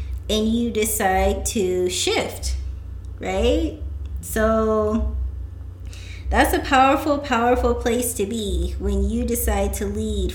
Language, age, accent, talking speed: English, 20-39, American, 110 wpm